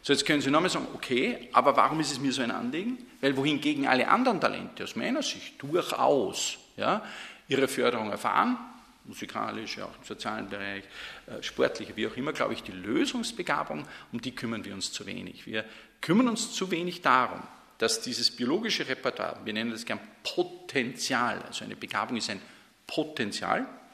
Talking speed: 175 wpm